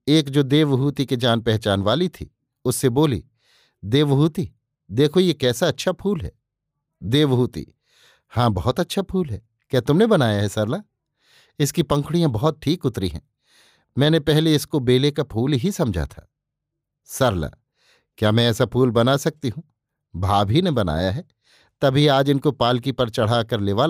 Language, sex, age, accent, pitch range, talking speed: Hindi, male, 50-69, native, 120-150 Hz, 155 wpm